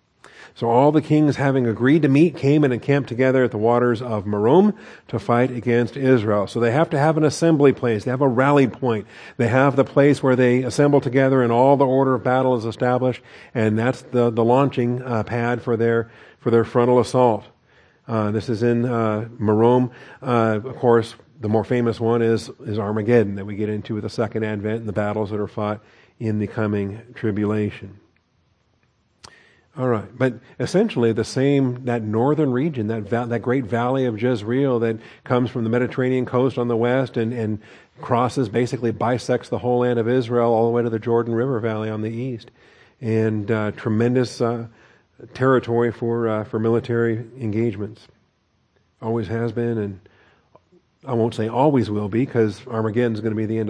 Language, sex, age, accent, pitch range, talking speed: English, male, 40-59, American, 110-125 Hz, 190 wpm